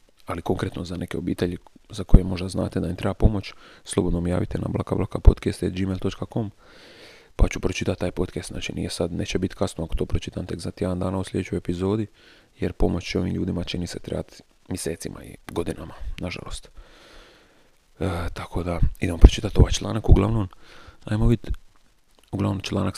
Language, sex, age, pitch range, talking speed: Croatian, male, 30-49, 90-105 Hz, 160 wpm